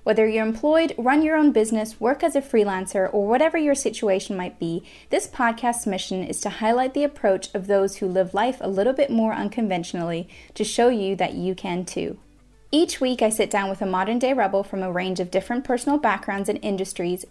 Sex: female